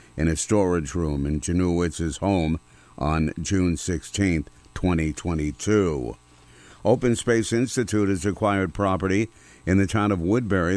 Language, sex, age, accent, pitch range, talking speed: English, male, 50-69, American, 85-100 Hz, 125 wpm